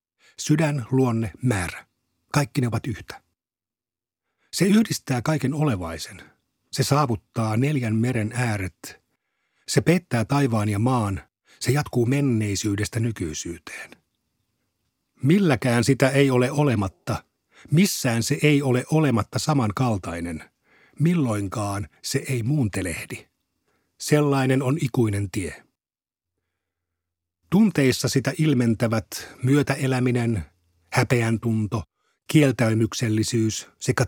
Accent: native